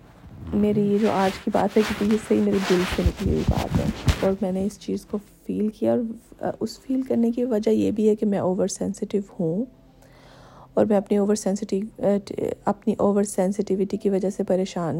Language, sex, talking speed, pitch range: Urdu, female, 200 wpm, 190-215 Hz